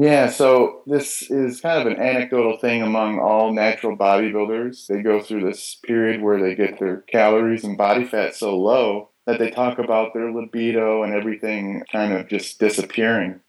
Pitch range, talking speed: 105-120 Hz, 180 wpm